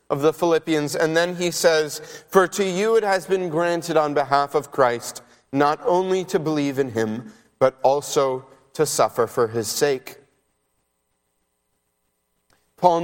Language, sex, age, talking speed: English, male, 30-49, 145 wpm